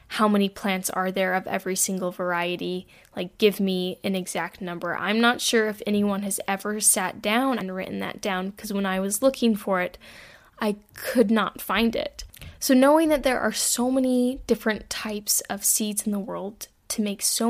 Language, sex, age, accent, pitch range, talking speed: English, female, 10-29, American, 195-235 Hz, 195 wpm